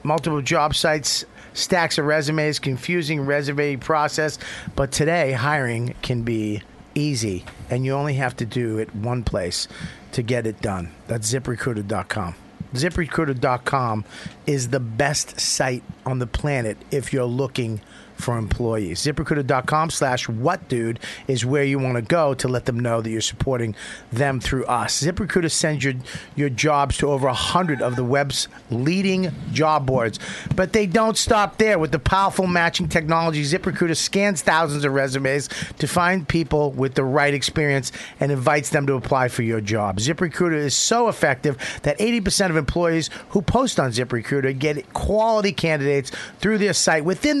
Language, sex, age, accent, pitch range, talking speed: English, male, 40-59, American, 125-165 Hz, 160 wpm